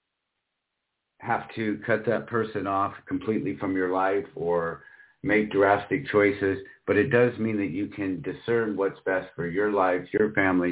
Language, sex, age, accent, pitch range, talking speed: English, male, 50-69, American, 95-110 Hz, 160 wpm